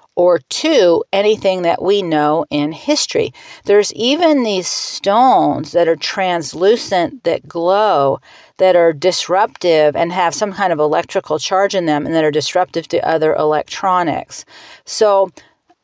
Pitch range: 160-195 Hz